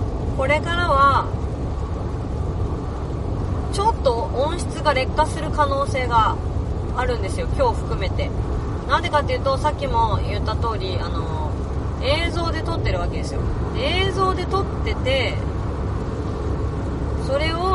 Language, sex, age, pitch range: Japanese, female, 30-49, 85-100 Hz